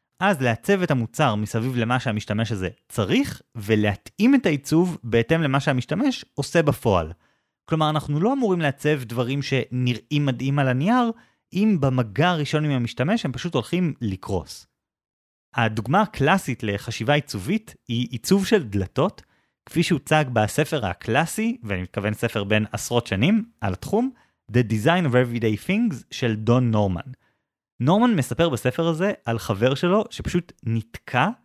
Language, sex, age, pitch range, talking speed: Hebrew, male, 30-49, 110-155 Hz, 140 wpm